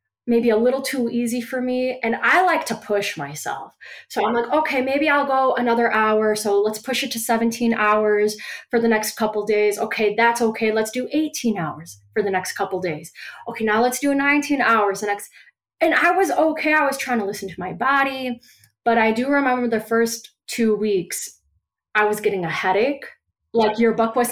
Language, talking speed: English, 205 wpm